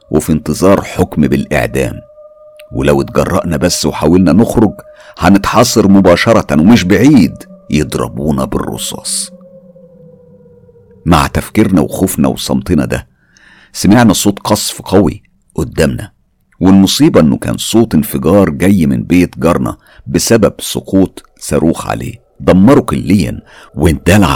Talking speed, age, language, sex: 100 wpm, 50-69, Arabic, male